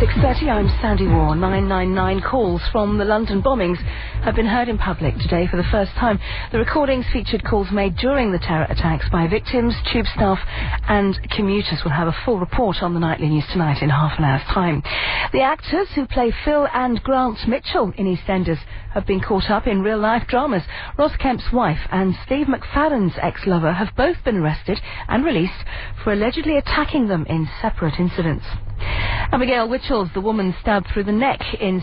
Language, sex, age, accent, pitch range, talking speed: English, female, 40-59, British, 160-225 Hz, 180 wpm